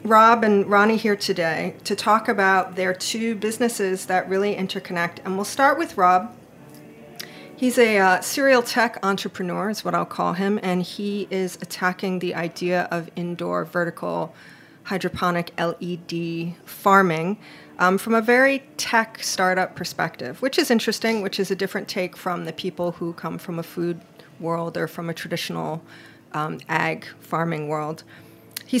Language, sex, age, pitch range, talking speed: English, female, 40-59, 175-210 Hz, 155 wpm